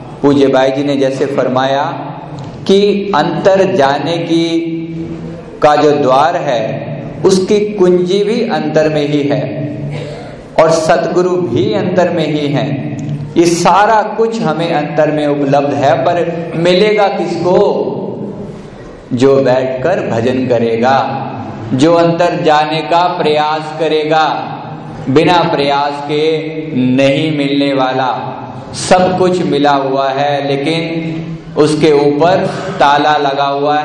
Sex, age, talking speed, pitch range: male, 50-69, 115 wpm, 130-165 Hz